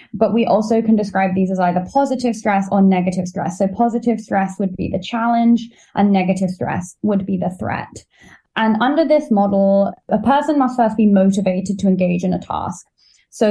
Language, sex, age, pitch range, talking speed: English, female, 10-29, 190-230 Hz, 190 wpm